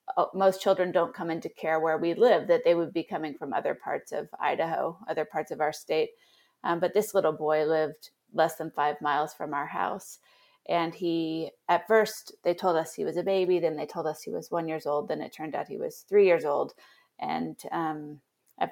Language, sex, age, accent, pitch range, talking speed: English, female, 30-49, American, 160-195 Hz, 220 wpm